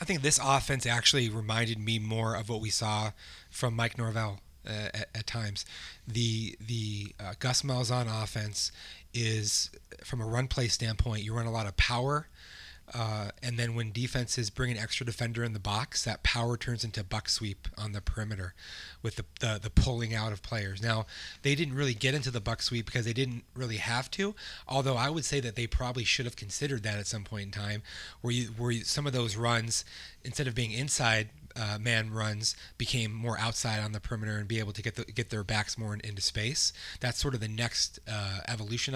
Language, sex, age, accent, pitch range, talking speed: English, male, 30-49, American, 110-125 Hz, 210 wpm